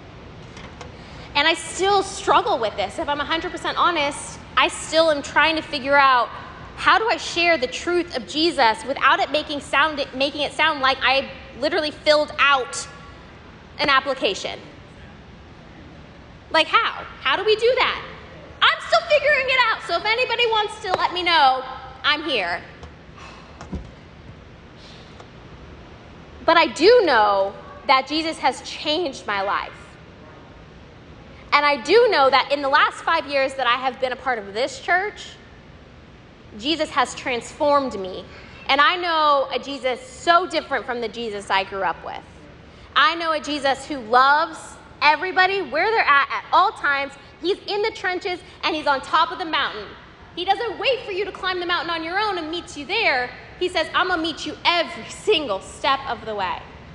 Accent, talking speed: American, 170 wpm